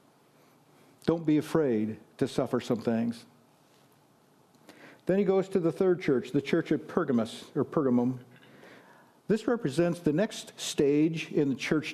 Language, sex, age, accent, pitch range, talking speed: English, male, 50-69, American, 145-185 Hz, 140 wpm